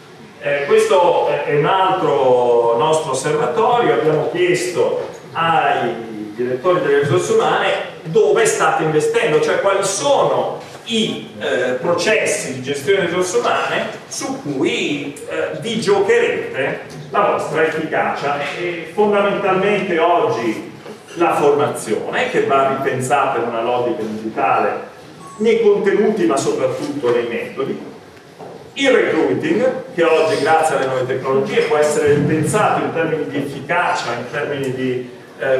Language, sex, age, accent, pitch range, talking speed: Italian, male, 40-59, native, 140-235 Hz, 125 wpm